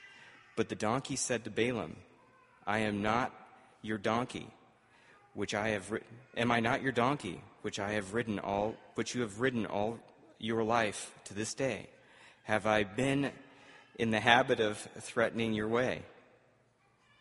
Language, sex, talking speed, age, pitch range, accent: English, male, 155 wpm, 40-59, 105-125 Hz, American